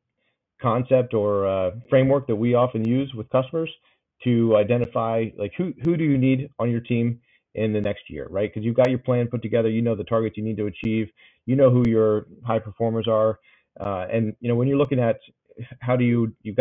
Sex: male